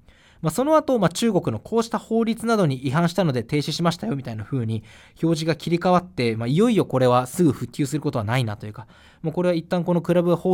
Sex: male